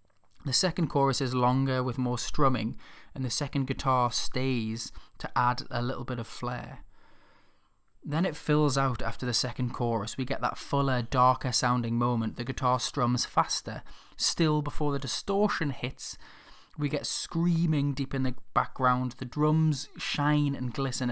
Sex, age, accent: male, 20-39, British